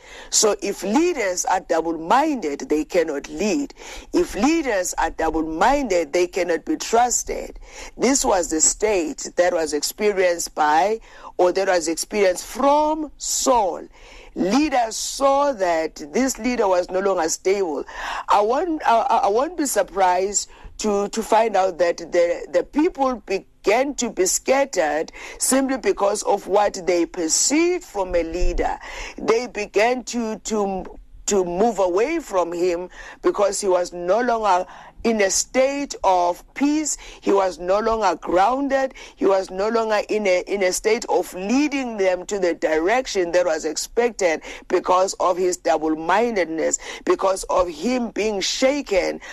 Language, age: English, 50-69